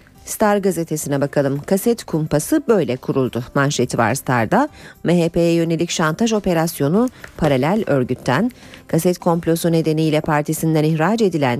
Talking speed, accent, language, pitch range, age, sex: 115 wpm, native, Turkish, 150-200 Hz, 40-59, female